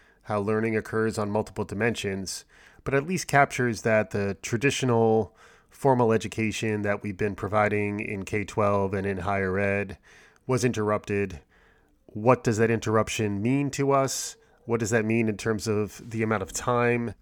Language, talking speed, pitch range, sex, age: English, 155 wpm, 105-120 Hz, male, 30-49